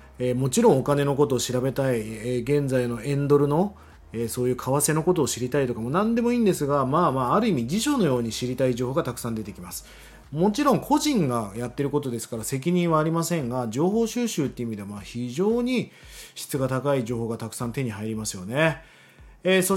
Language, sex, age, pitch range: Japanese, male, 30-49, 120-195 Hz